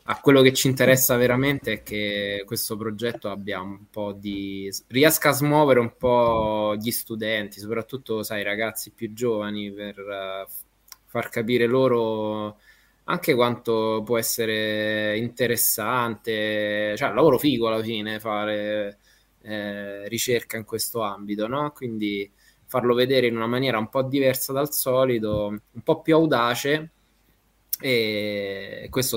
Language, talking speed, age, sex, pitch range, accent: Italian, 135 wpm, 20-39, male, 105-120 Hz, native